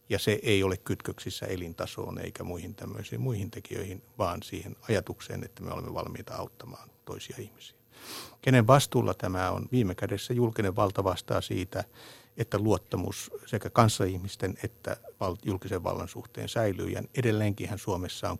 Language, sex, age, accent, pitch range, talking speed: Finnish, male, 60-79, native, 95-120 Hz, 145 wpm